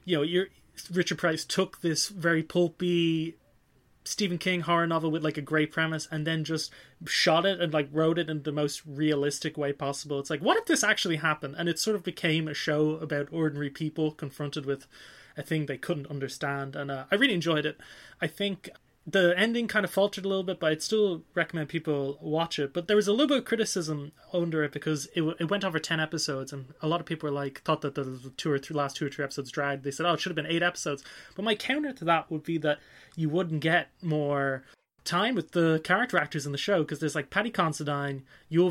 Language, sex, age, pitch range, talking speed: English, male, 20-39, 140-170 Hz, 235 wpm